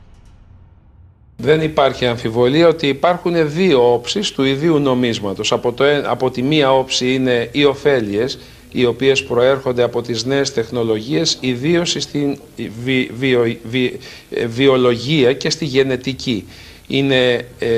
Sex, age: male, 60-79